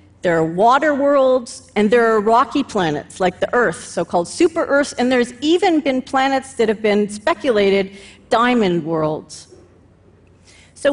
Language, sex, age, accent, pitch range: Chinese, female, 40-59, American, 190-270 Hz